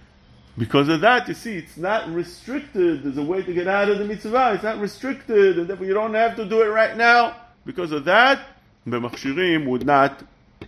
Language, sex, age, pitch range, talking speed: English, male, 50-69, 110-160 Hz, 210 wpm